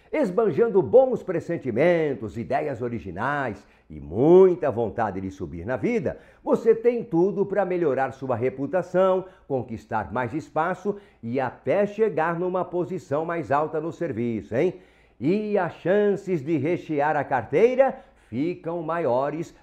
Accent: Brazilian